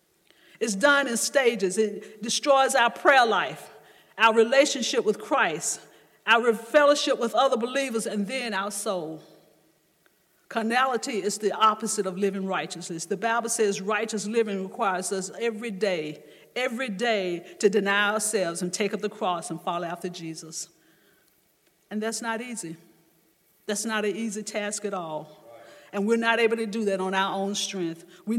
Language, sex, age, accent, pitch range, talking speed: English, female, 50-69, American, 185-230 Hz, 160 wpm